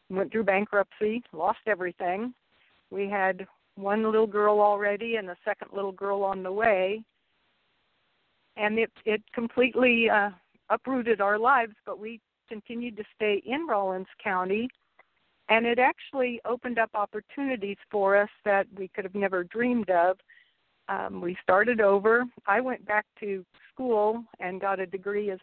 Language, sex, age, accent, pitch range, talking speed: English, female, 60-79, American, 190-220 Hz, 150 wpm